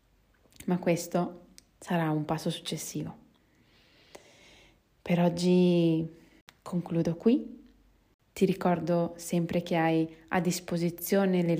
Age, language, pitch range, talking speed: 20-39, Italian, 165-185 Hz, 95 wpm